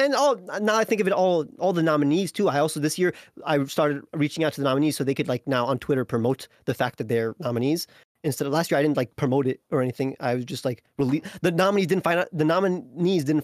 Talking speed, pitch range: 270 wpm, 120-165 Hz